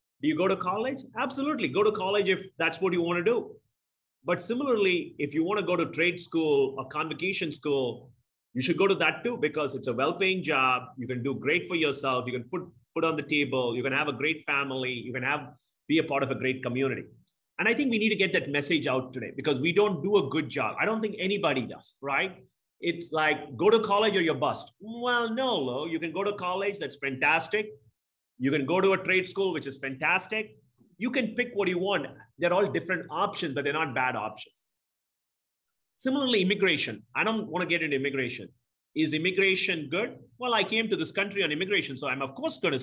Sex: male